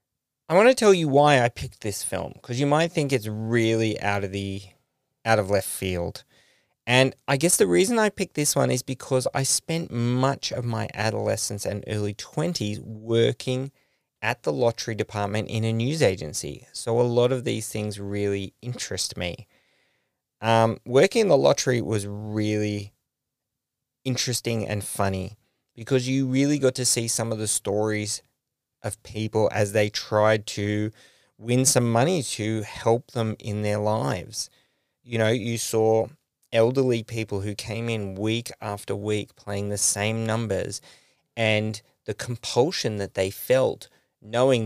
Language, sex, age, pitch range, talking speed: English, male, 20-39, 105-130 Hz, 160 wpm